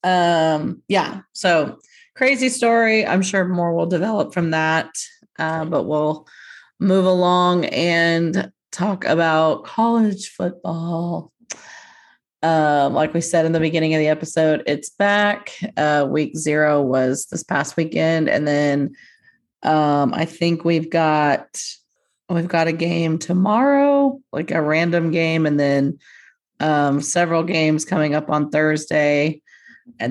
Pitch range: 155-180 Hz